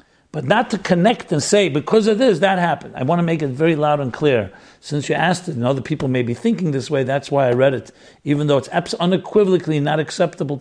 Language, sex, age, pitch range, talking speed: English, male, 60-79, 130-165 Hz, 245 wpm